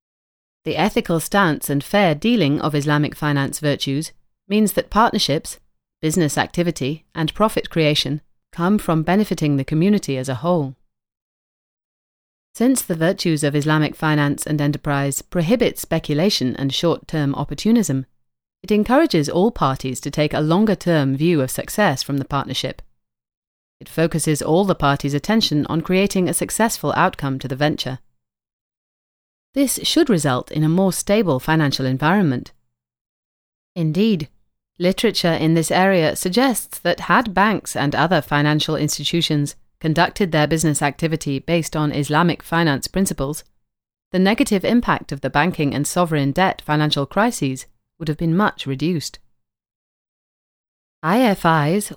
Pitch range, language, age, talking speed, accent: 140-180 Hz, English, 30-49, 135 wpm, British